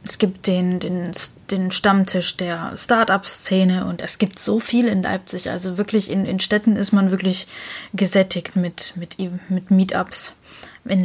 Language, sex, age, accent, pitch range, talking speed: German, female, 20-39, German, 185-205 Hz, 165 wpm